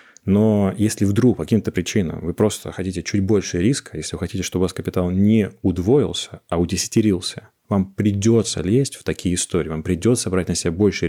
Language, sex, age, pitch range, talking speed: Russian, male, 20-39, 90-110 Hz, 190 wpm